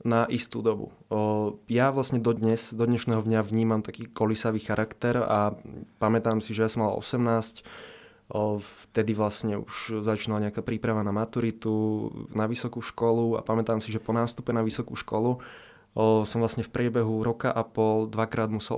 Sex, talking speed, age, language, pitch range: male, 175 wpm, 20-39, Slovak, 110-115 Hz